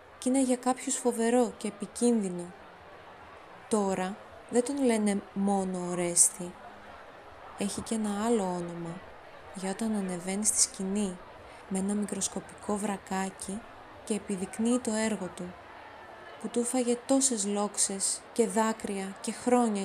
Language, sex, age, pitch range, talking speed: Greek, female, 20-39, 190-230 Hz, 120 wpm